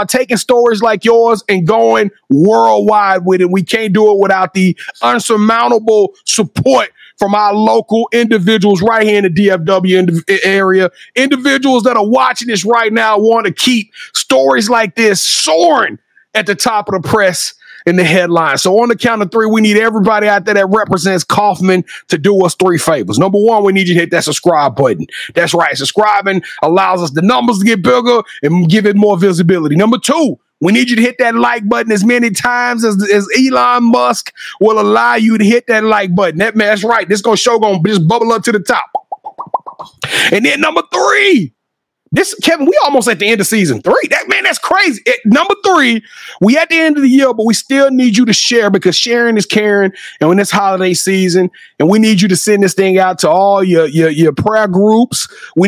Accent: American